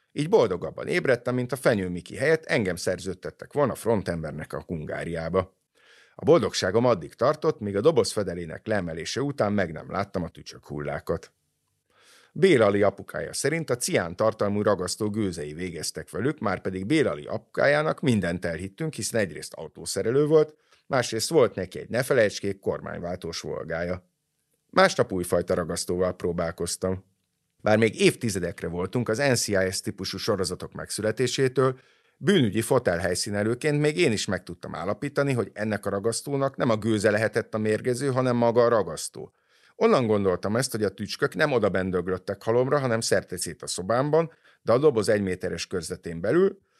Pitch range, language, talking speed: 90-125 Hz, Hungarian, 140 wpm